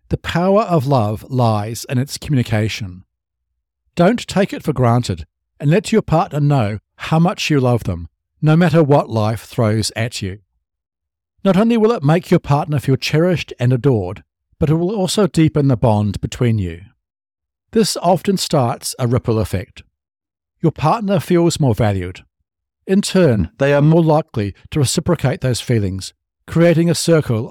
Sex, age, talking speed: male, 60-79, 160 wpm